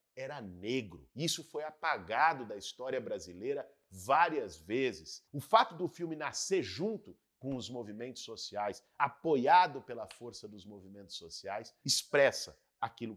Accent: Brazilian